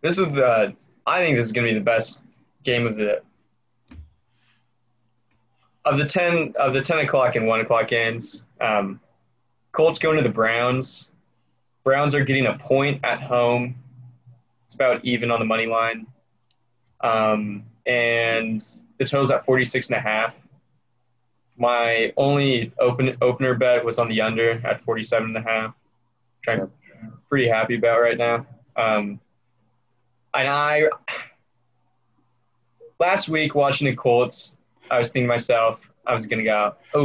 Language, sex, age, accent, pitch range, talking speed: English, male, 20-39, American, 115-135 Hz, 155 wpm